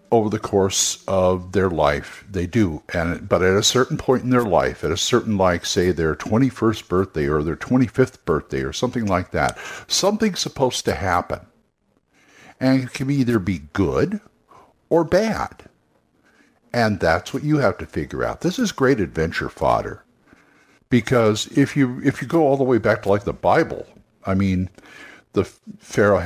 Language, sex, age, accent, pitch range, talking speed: English, male, 60-79, American, 95-130 Hz, 175 wpm